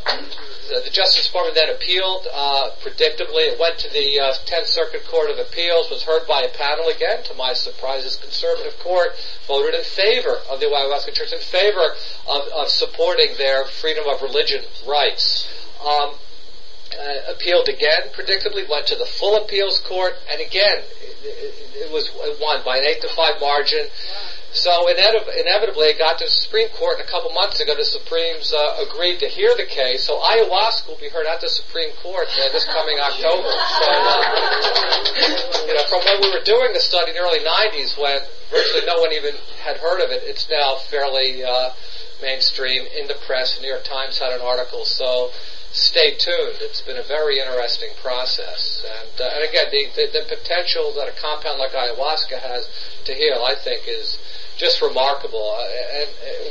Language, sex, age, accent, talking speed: English, male, 40-59, American, 180 wpm